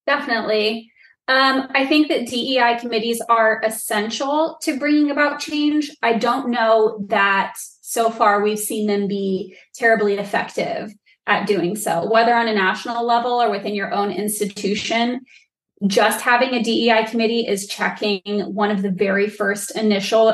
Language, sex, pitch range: English, female, 205-235 Hz